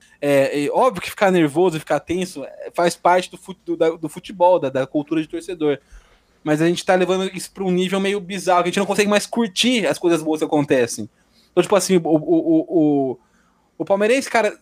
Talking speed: 225 wpm